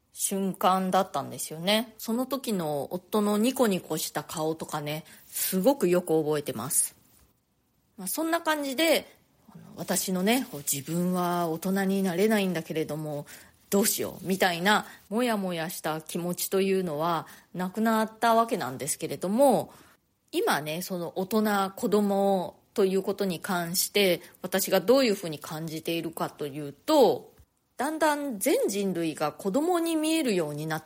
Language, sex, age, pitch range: Japanese, female, 20-39, 165-235 Hz